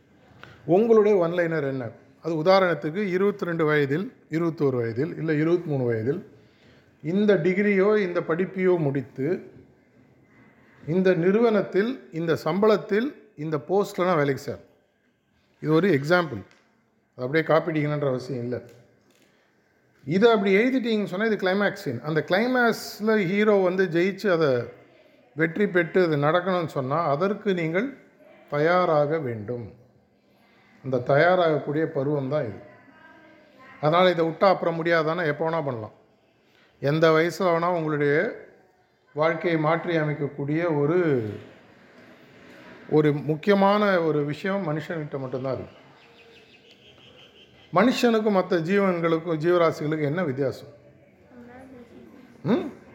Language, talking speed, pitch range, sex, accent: Tamil, 100 wpm, 145-190 Hz, male, native